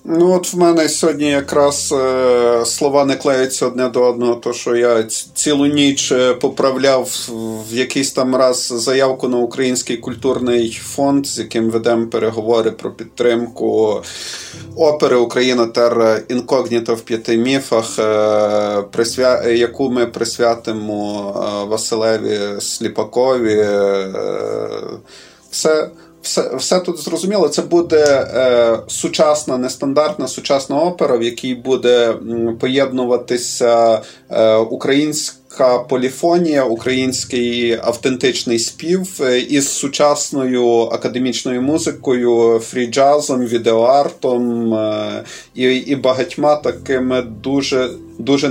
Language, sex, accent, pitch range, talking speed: Ukrainian, male, native, 115-135 Hz, 100 wpm